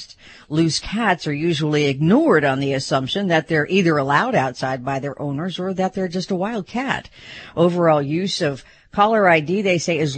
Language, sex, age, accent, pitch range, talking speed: English, female, 50-69, American, 140-190 Hz, 185 wpm